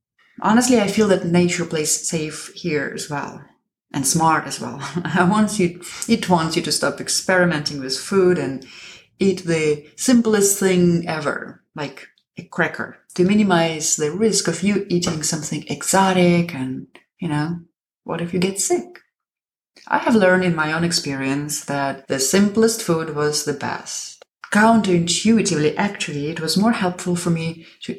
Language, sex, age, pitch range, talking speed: English, female, 30-49, 155-200 Hz, 160 wpm